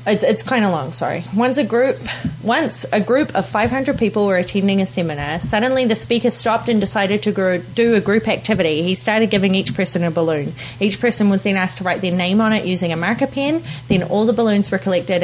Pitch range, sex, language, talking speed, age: 170-220 Hz, female, English, 215 wpm, 30-49